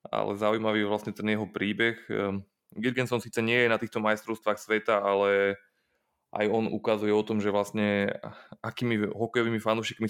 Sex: male